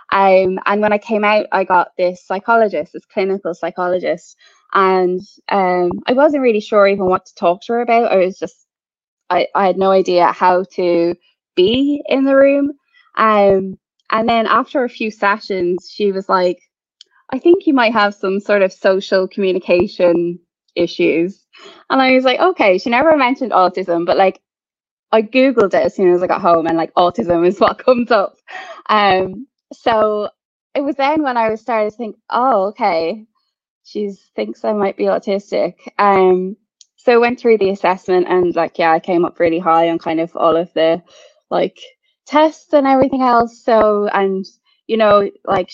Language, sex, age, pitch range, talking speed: English, female, 10-29, 180-235 Hz, 180 wpm